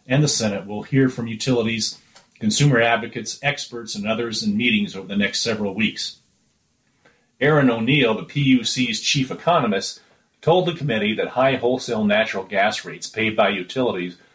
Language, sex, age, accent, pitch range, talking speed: English, male, 40-59, American, 110-130 Hz, 155 wpm